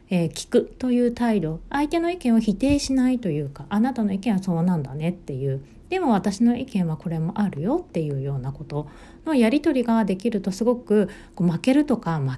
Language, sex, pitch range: Japanese, female, 170-250 Hz